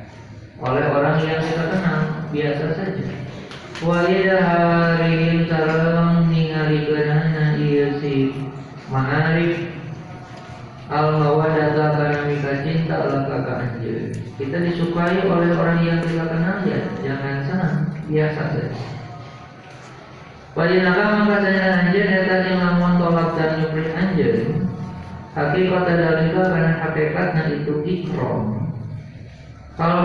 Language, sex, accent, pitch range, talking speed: Indonesian, male, native, 140-175 Hz, 100 wpm